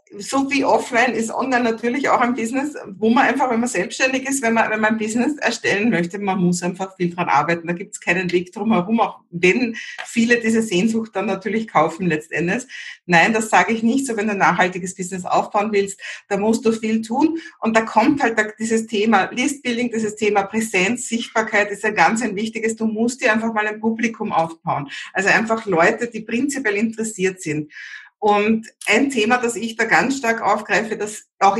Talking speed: 200 wpm